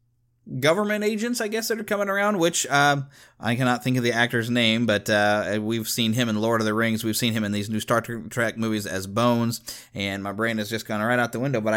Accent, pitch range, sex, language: American, 115-140 Hz, male, English